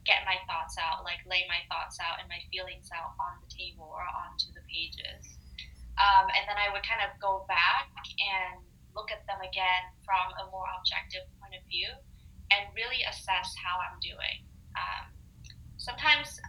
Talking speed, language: 180 wpm, English